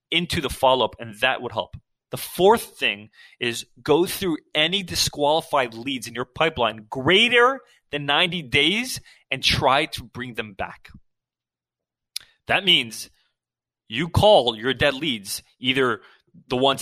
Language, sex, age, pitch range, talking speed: English, male, 20-39, 125-165 Hz, 140 wpm